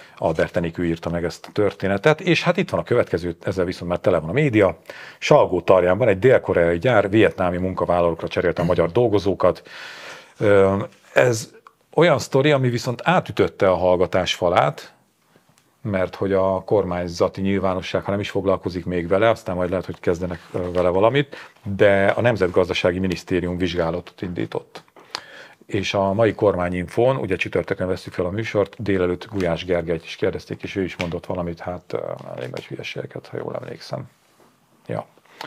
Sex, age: male, 40-59